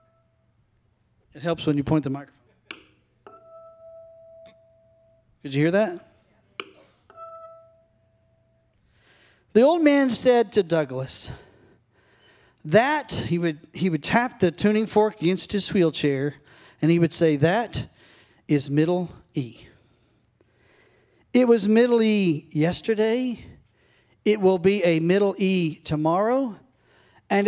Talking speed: 110 wpm